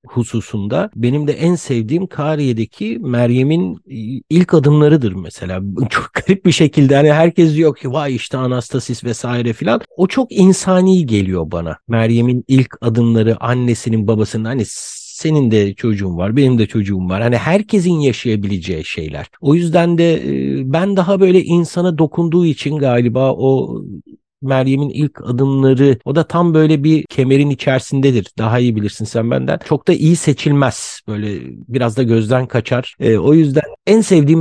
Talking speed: 150 wpm